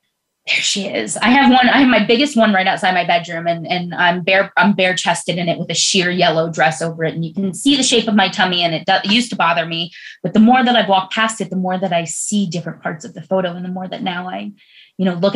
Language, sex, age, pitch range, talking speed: English, female, 20-39, 180-225 Hz, 285 wpm